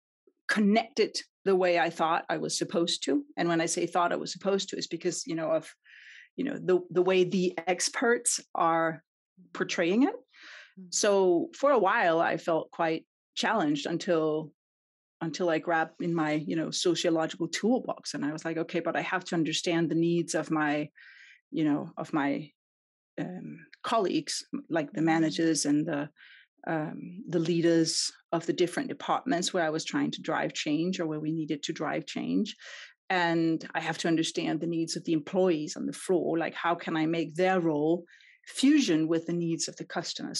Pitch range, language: 160-195 Hz, English